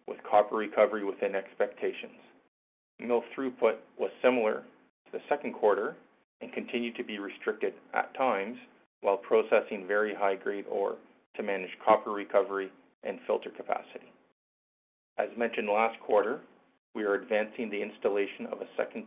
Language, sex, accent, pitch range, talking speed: English, male, American, 100-125 Hz, 140 wpm